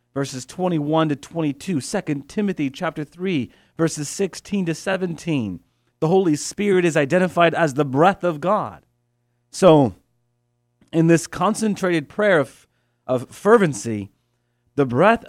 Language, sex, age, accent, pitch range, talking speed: English, male, 40-59, American, 125-180 Hz, 125 wpm